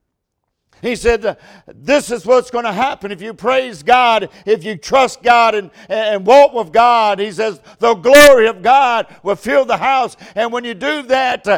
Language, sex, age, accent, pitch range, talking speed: English, male, 50-69, American, 165-240 Hz, 185 wpm